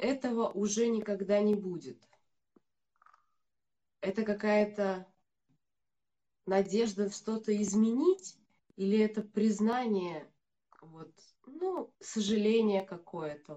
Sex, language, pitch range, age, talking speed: female, Russian, 190-230 Hz, 20-39, 75 wpm